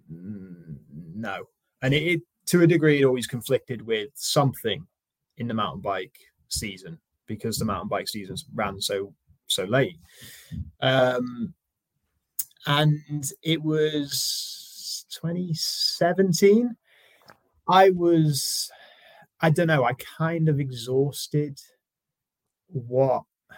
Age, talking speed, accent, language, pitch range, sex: 20-39, 105 wpm, British, English, 110-150 Hz, male